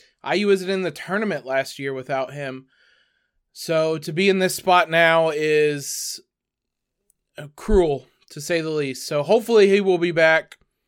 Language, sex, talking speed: English, male, 155 wpm